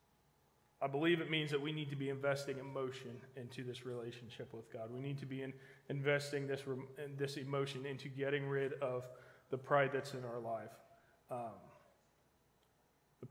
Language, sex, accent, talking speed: English, male, American, 175 wpm